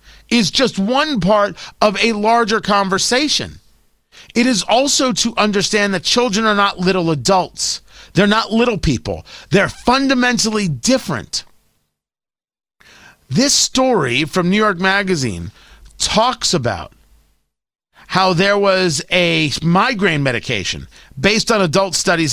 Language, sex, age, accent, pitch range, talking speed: English, male, 40-59, American, 155-220 Hz, 120 wpm